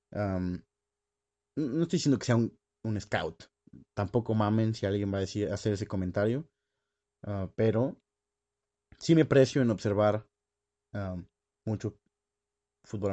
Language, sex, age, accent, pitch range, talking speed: Spanish, male, 20-39, Mexican, 105-130 Hz, 115 wpm